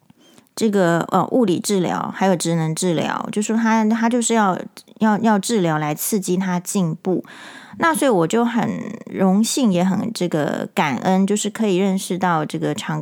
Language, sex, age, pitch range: Chinese, female, 30-49, 180-240 Hz